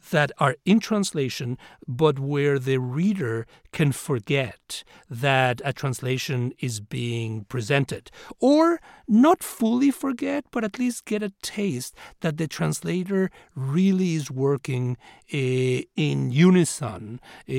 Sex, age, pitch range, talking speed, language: male, 60-79, 135-185 Hz, 120 wpm, English